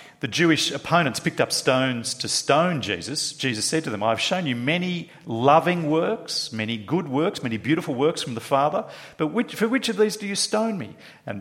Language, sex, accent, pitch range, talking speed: English, male, Australian, 130-175 Hz, 200 wpm